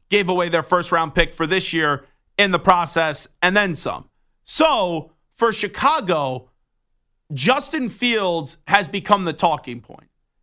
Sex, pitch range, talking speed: male, 170-220 Hz, 145 wpm